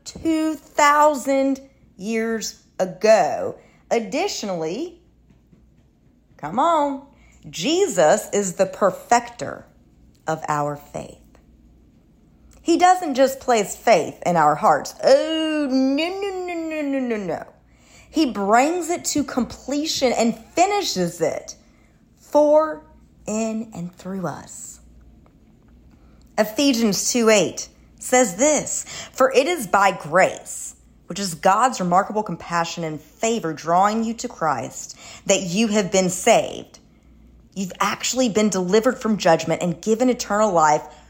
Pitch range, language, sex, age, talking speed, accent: 185-275 Hz, English, female, 40-59, 115 wpm, American